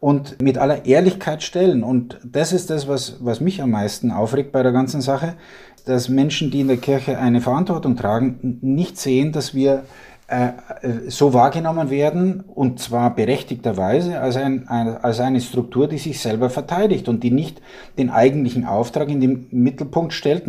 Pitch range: 120-150 Hz